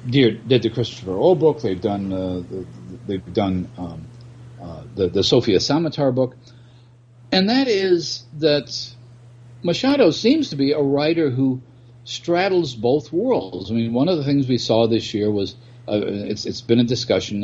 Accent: American